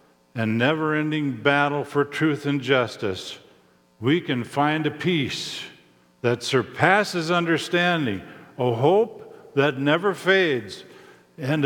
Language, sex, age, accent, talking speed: English, male, 50-69, American, 110 wpm